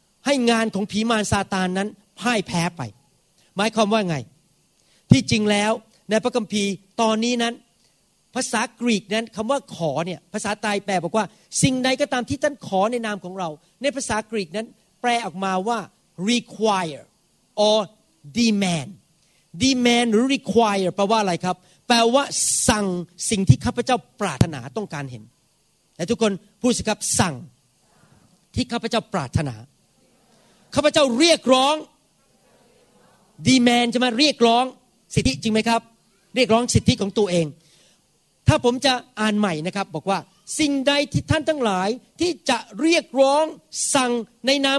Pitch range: 185-250 Hz